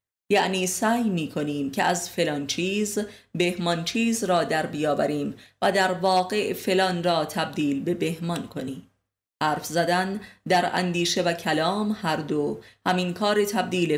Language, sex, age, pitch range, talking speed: Persian, female, 30-49, 150-180 Hz, 140 wpm